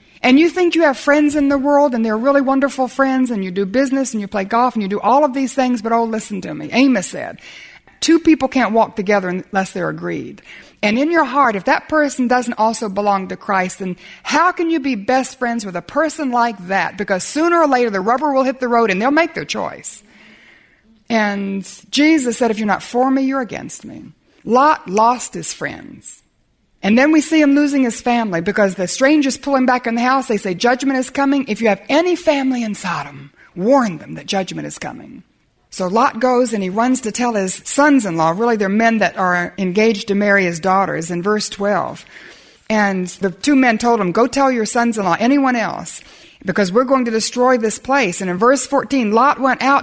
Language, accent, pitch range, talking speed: English, American, 210-285 Hz, 220 wpm